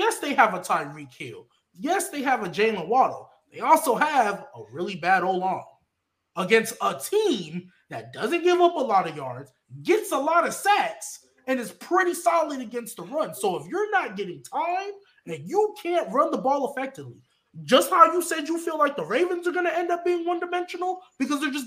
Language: English